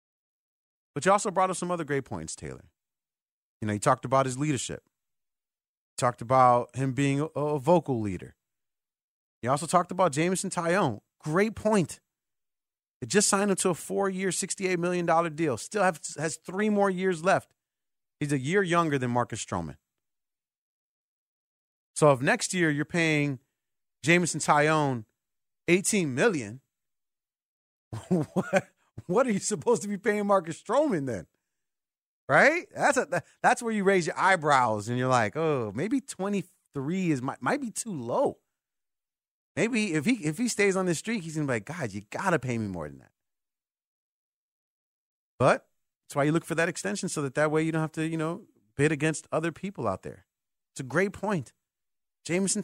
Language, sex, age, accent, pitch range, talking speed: English, male, 30-49, American, 135-190 Hz, 175 wpm